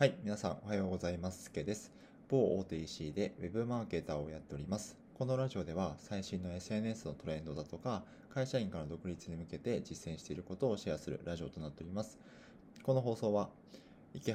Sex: male